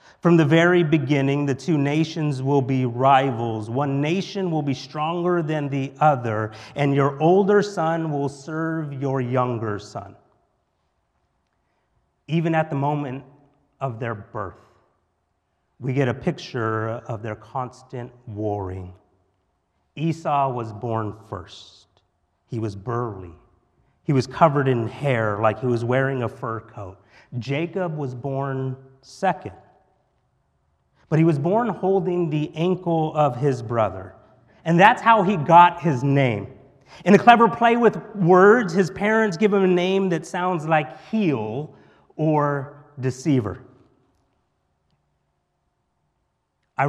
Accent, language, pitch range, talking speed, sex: American, English, 115-160 Hz, 130 wpm, male